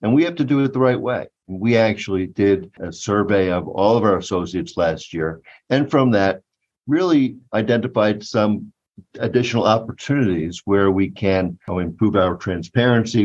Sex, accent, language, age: male, American, English, 50-69